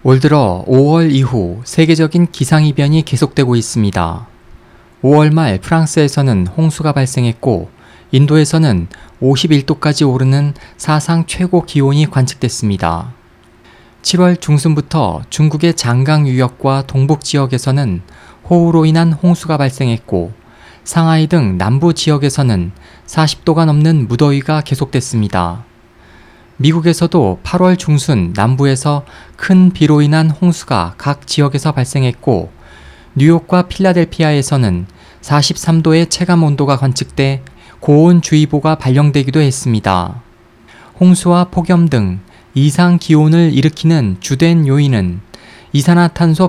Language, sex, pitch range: Korean, male, 120-160 Hz